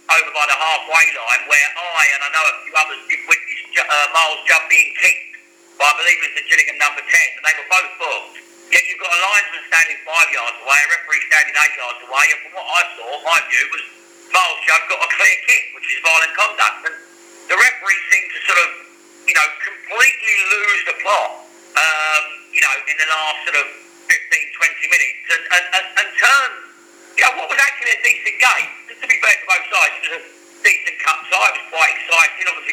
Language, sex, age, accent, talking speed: English, male, 50-69, British, 220 wpm